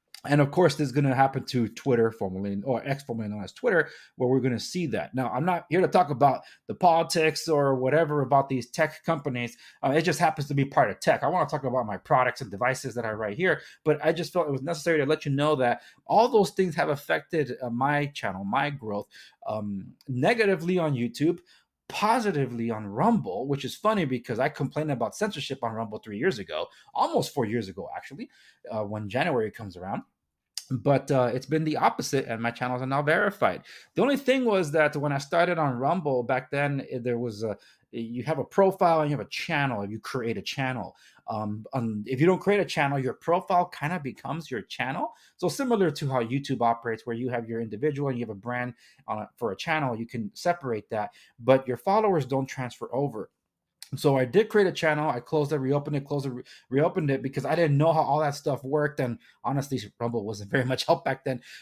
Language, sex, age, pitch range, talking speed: English, male, 30-49, 125-160 Hz, 220 wpm